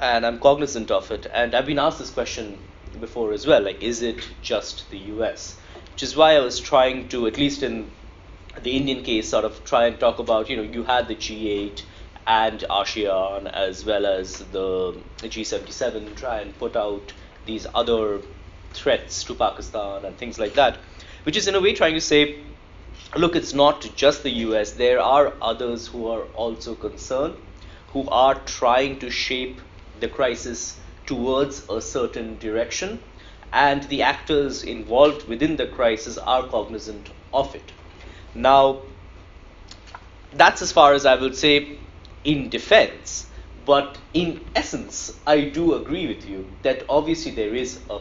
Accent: Indian